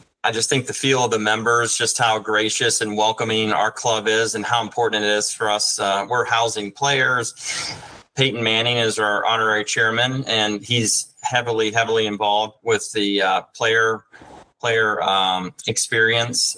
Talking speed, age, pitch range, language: 165 wpm, 30-49, 105-120 Hz, English